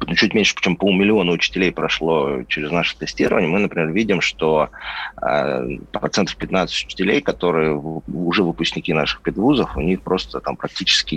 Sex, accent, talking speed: male, native, 150 wpm